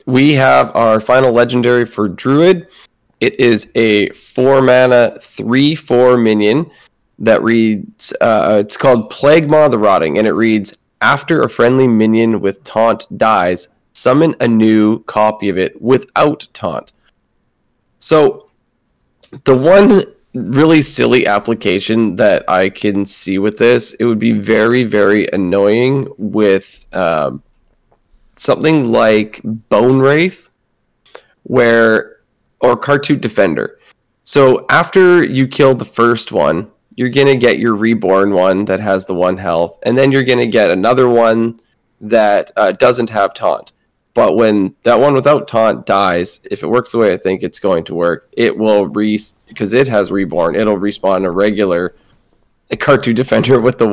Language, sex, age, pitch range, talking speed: English, male, 20-39, 105-130 Hz, 145 wpm